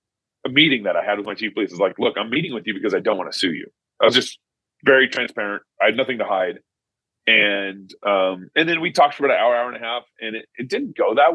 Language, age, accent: English, 30-49, American